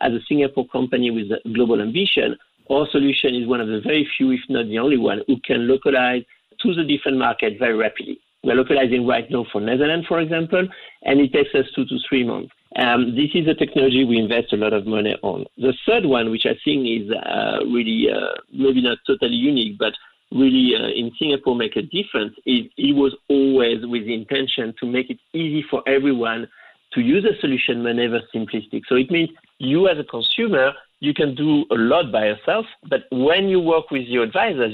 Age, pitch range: 50-69, 120-155 Hz